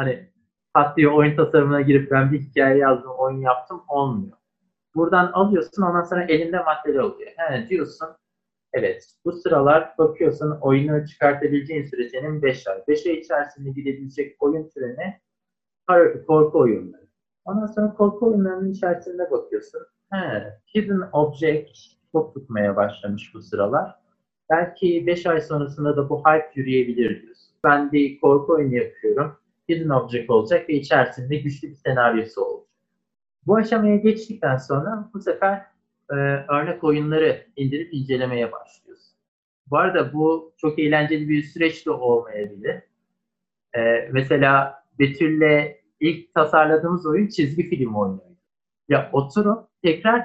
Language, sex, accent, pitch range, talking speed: Turkish, male, native, 140-185 Hz, 130 wpm